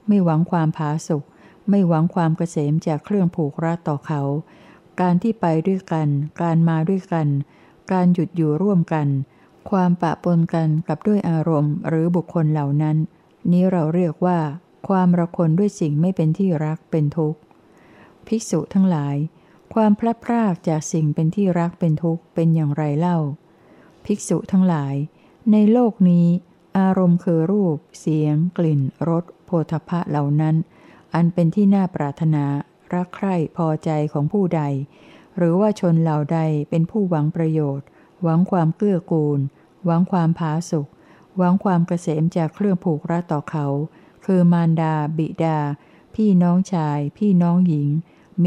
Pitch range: 155-180 Hz